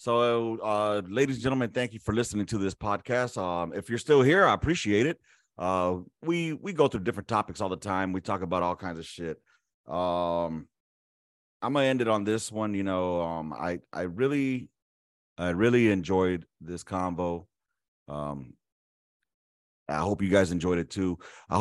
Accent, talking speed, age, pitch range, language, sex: American, 180 wpm, 30-49, 85-110 Hz, English, male